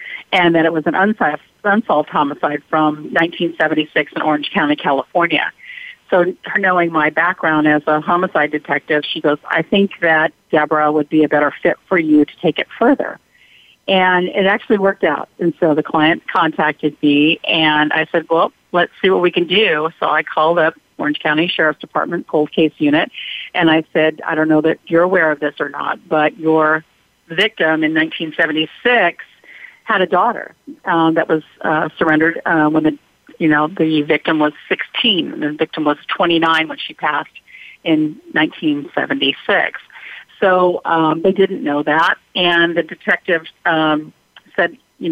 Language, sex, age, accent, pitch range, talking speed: English, female, 50-69, American, 155-180 Hz, 170 wpm